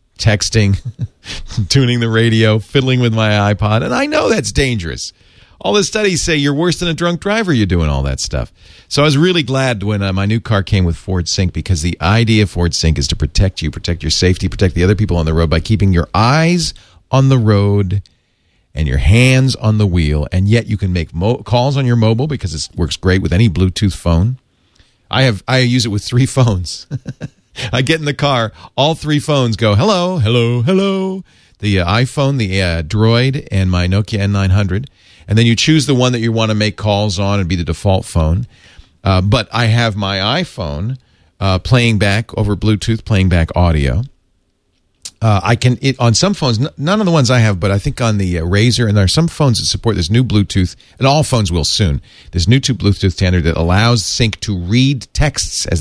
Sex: male